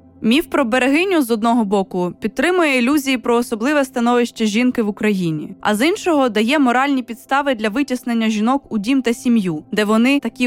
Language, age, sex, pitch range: Ukrainian, 20-39, female, 220-270 Hz